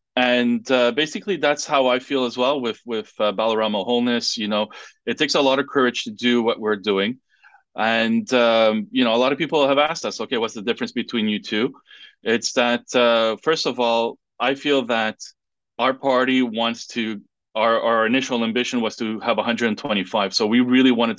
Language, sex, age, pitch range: English, male, 30-49, 110-125 Hz